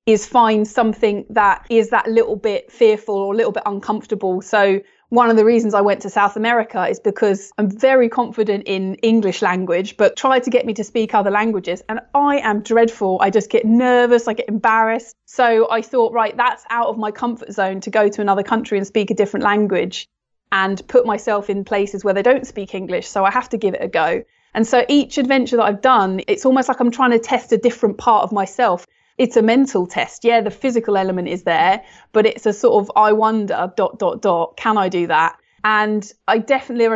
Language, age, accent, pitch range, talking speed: English, 30-49, British, 200-230 Hz, 220 wpm